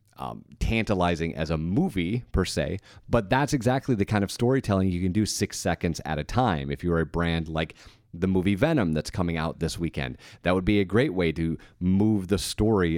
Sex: male